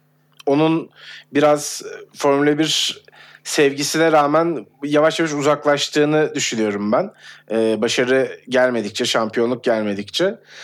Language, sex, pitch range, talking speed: Turkish, male, 125-155 Hz, 90 wpm